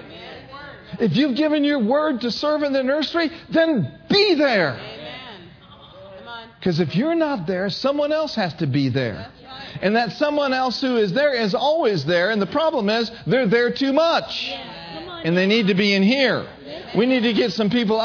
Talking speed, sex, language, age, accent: 185 wpm, male, English, 50-69, American